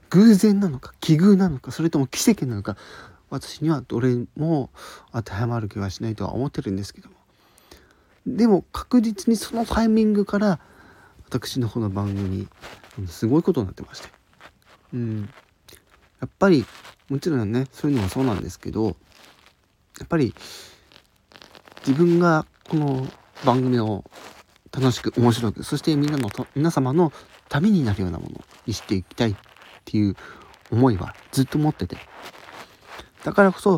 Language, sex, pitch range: Japanese, male, 100-150 Hz